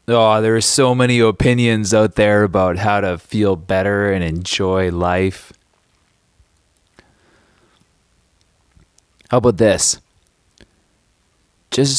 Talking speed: 100 wpm